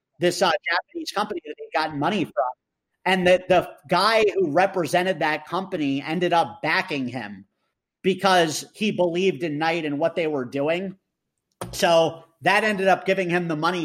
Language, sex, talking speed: English, male, 170 wpm